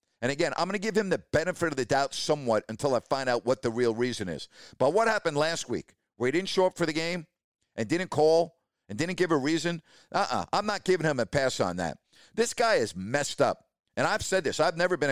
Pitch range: 130-180 Hz